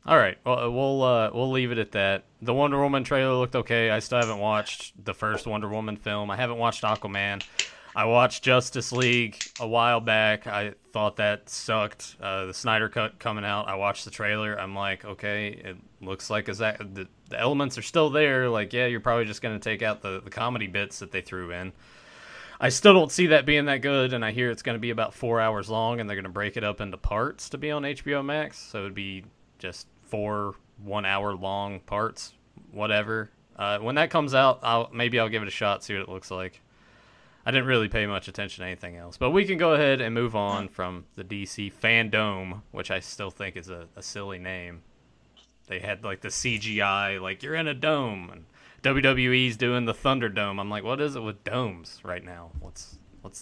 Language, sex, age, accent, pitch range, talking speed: English, male, 20-39, American, 100-125 Hz, 220 wpm